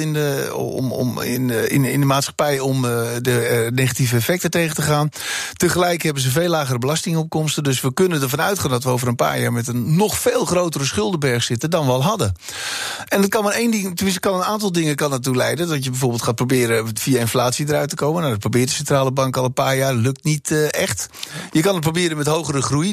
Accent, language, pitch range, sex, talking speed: Dutch, Dutch, 125-175 Hz, male, 230 wpm